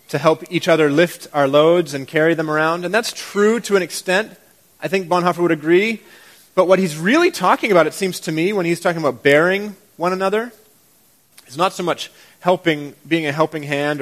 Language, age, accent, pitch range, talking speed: English, 30-49, American, 155-220 Hz, 205 wpm